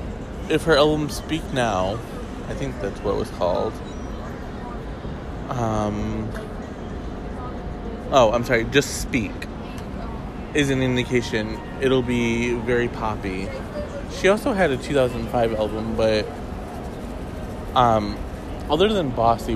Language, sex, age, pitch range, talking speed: English, male, 20-39, 105-125 Hz, 110 wpm